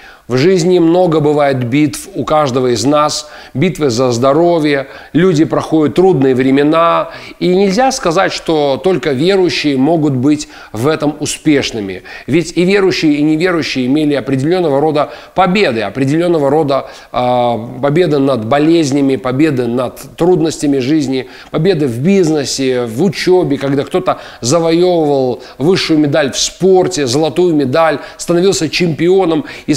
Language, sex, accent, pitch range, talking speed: Russian, male, native, 140-175 Hz, 125 wpm